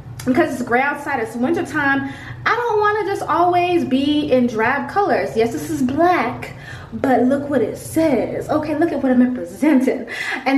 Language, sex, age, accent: English, female, 20-39, American